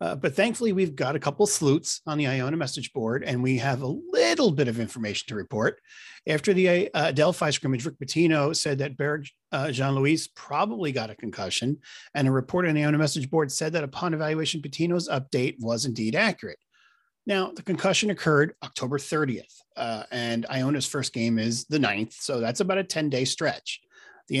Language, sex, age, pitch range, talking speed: English, male, 40-59, 130-175 Hz, 190 wpm